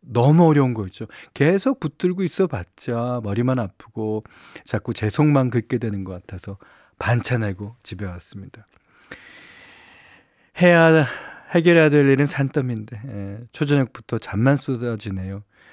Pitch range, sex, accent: 105-150 Hz, male, native